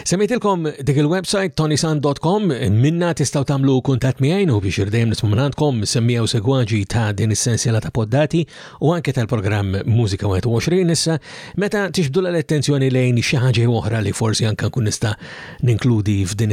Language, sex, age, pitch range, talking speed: English, male, 50-69, 115-155 Hz, 140 wpm